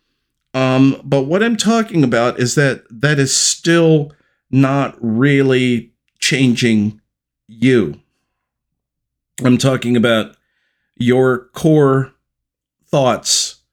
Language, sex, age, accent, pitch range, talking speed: English, male, 40-59, American, 115-135 Hz, 90 wpm